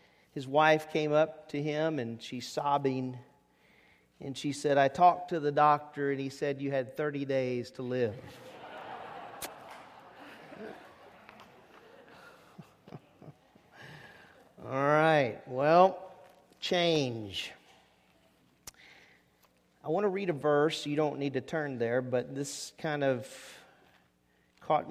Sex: male